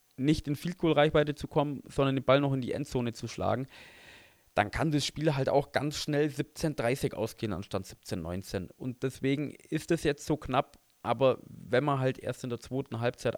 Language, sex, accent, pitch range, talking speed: German, male, German, 115-145 Hz, 200 wpm